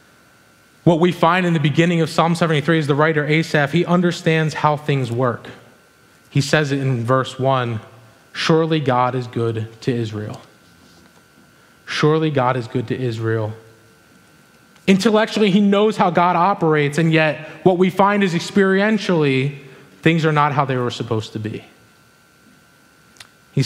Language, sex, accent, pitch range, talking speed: English, male, American, 120-160 Hz, 150 wpm